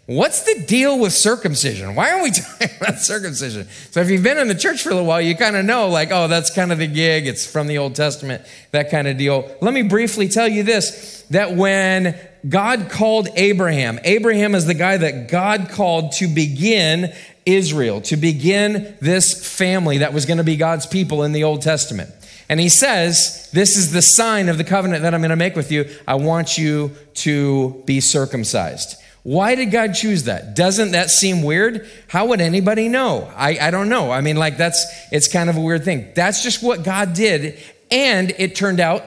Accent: American